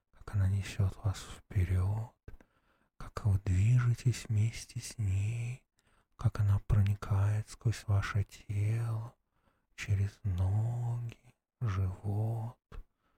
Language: Russian